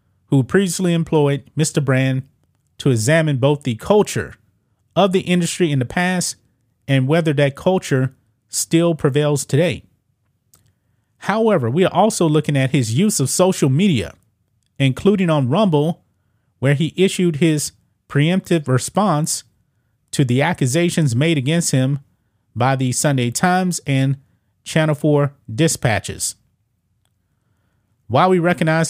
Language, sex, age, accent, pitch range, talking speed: English, male, 30-49, American, 115-160 Hz, 125 wpm